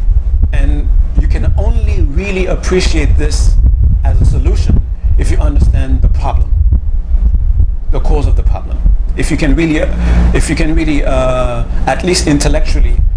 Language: English